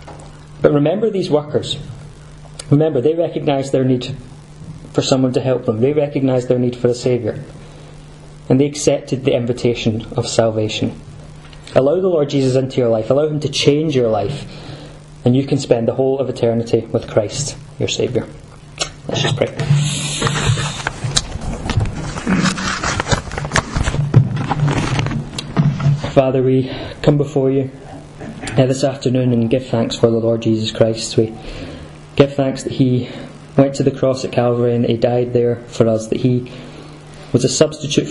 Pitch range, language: 120-145 Hz, English